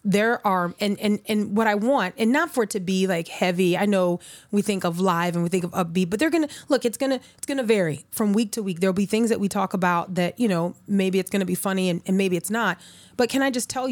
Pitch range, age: 185-235 Hz, 30-49